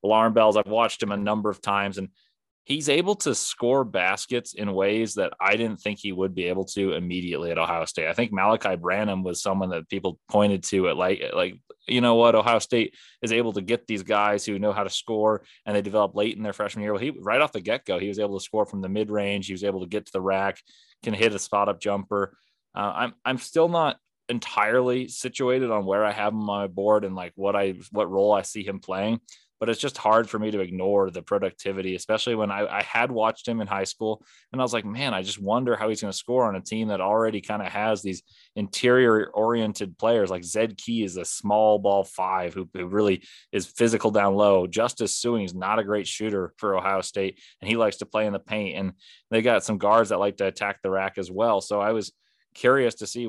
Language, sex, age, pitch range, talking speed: English, male, 20-39, 100-110 Hz, 240 wpm